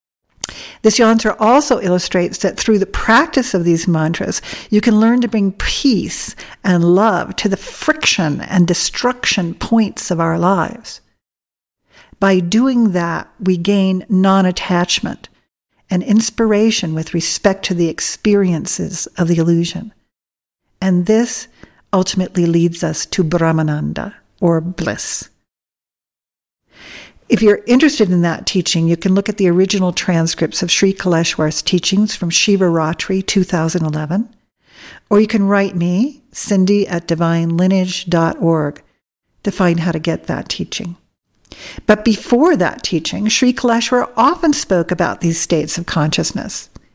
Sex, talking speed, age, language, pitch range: female, 130 wpm, 50-69, English, 170-220 Hz